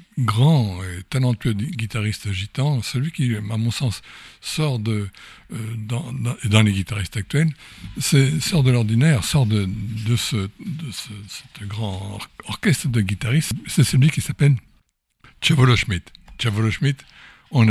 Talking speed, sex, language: 140 wpm, male, French